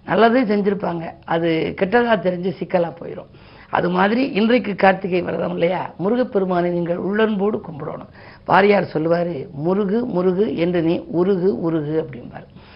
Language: Tamil